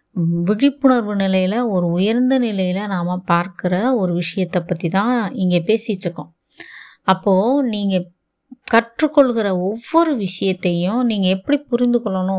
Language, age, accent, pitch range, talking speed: Tamil, 20-39, native, 175-235 Hz, 105 wpm